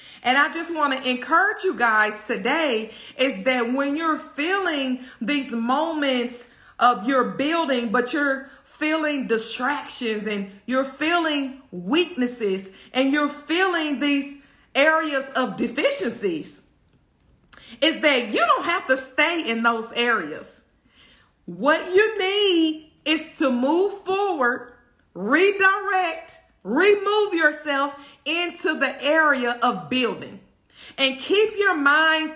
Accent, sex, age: American, female, 40-59